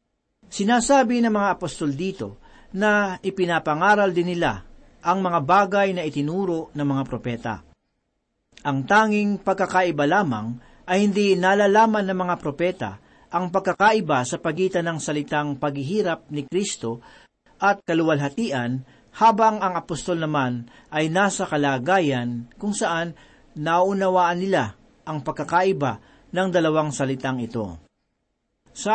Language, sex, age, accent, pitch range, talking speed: Filipino, male, 40-59, native, 150-195 Hz, 115 wpm